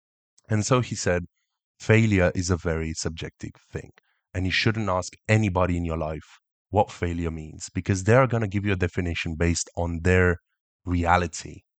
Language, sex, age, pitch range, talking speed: English, male, 30-49, 85-105 Hz, 165 wpm